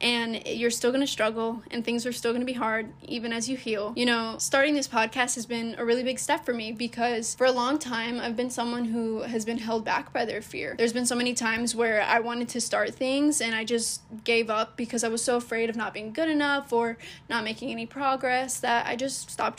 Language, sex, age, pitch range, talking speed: English, female, 10-29, 230-260 Hz, 245 wpm